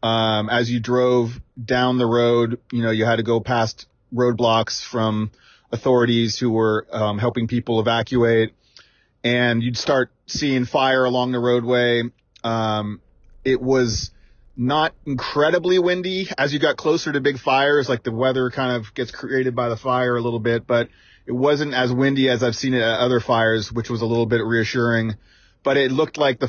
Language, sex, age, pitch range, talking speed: English, male, 30-49, 110-125 Hz, 180 wpm